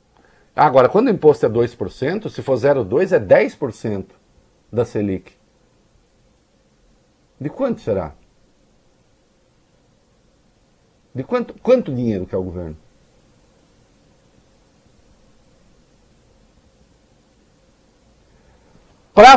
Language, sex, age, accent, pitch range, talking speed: English, male, 50-69, Brazilian, 110-175 Hz, 75 wpm